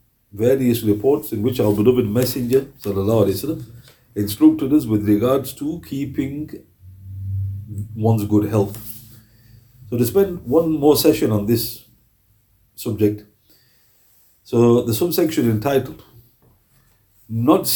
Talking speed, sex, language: 110 wpm, male, English